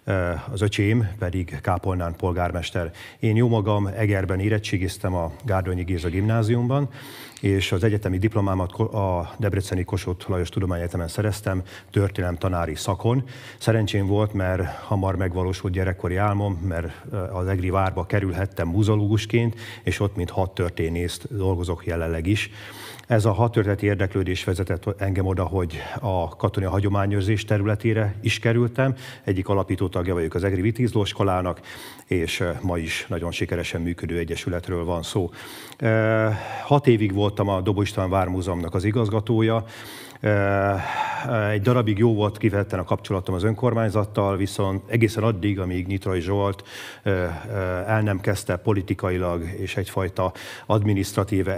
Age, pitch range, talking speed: 40-59, 95-105 Hz, 125 wpm